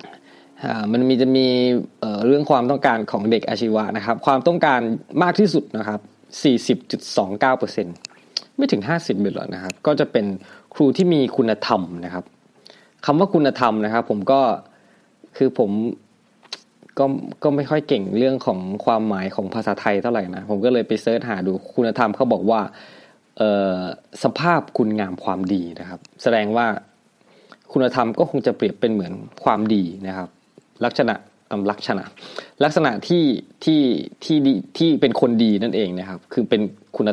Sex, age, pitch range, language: male, 20-39, 100-135 Hz, Thai